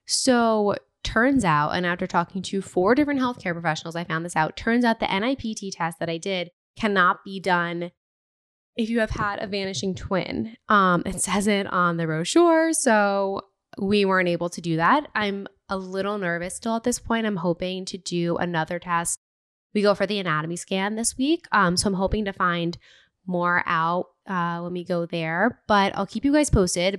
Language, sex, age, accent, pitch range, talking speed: English, female, 10-29, American, 175-215 Hz, 195 wpm